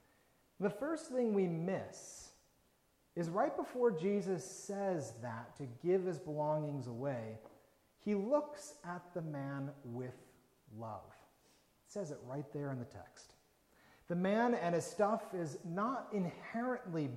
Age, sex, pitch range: 40-59, male, 135-210 Hz